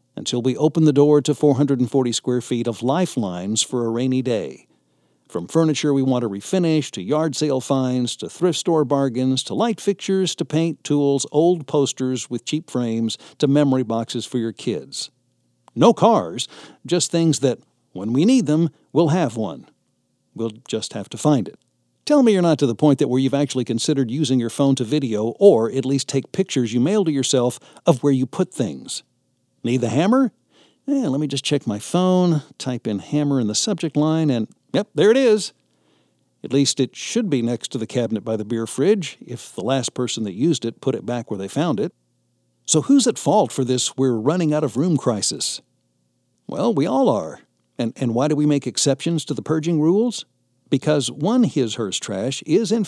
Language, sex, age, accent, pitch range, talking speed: English, male, 60-79, American, 120-155 Hz, 200 wpm